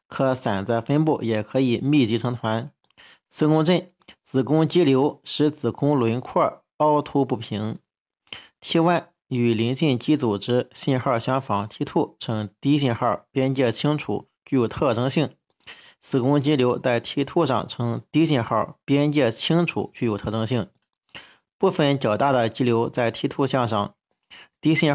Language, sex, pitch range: Chinese, male, 115-145 Hz